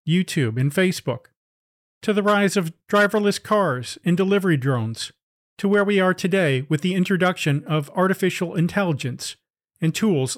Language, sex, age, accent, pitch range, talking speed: English, male, 40-59, American, 155-205 Hz, 145 wpm